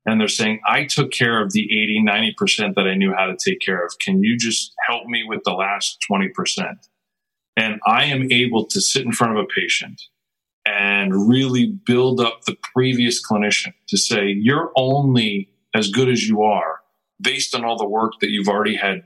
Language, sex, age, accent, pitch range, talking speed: English, male, 40-59, American, 105-155 Hz, 200 wpm